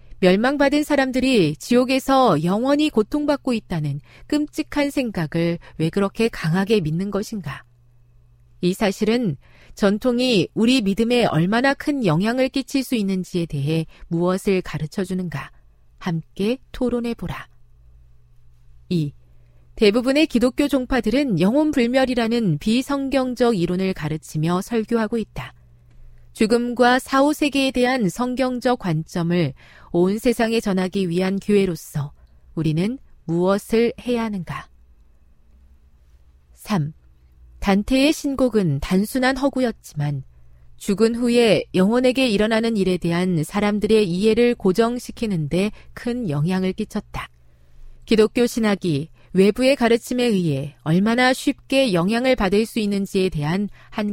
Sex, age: female, 40-59